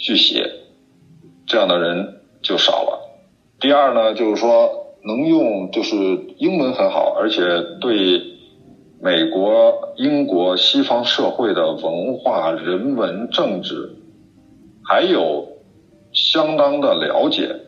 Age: 50-69